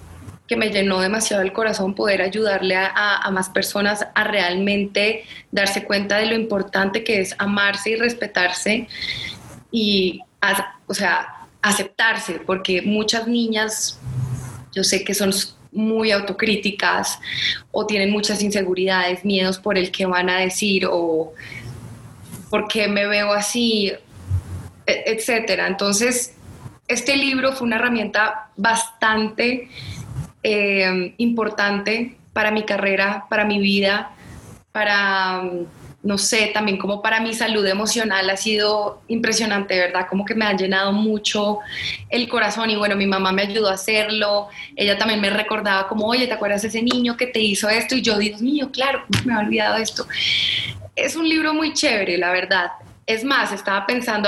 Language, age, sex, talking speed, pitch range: English, 20-39, female, 150 wpm, 190-220 Hz